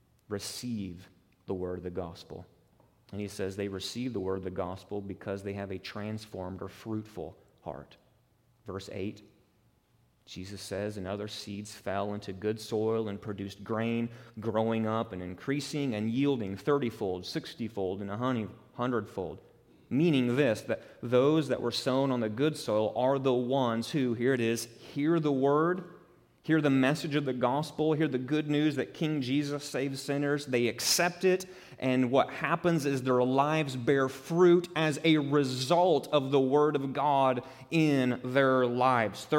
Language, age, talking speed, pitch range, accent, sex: English, 30-49, 165 wpm, 105-135 Hz, American, male